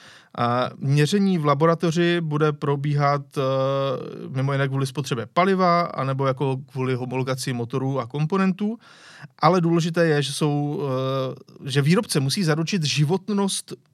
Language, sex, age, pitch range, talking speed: Czech, male, 30-49, 135-170 Hz, 115 wpm